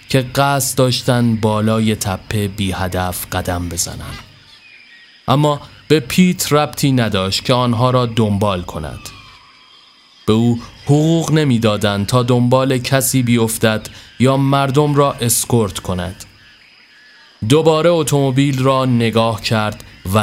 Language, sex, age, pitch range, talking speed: Persian, male, 30-49, 110-140 Hz, 115 wpm